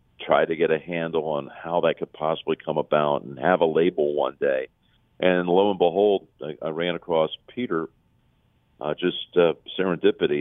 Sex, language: male, English